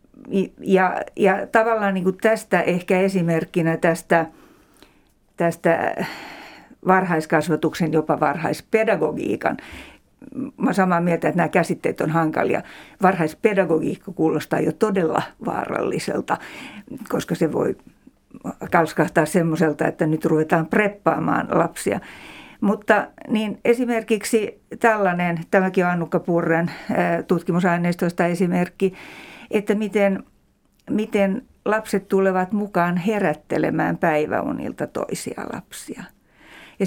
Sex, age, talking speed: female, 60-79, 95 wpm